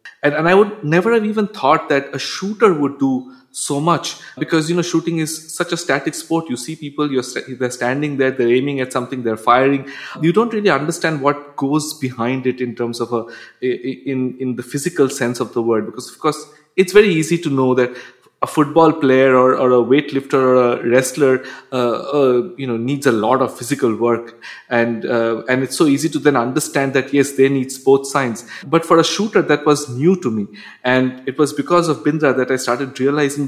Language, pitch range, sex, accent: English, 125-155 Hz, male, Indian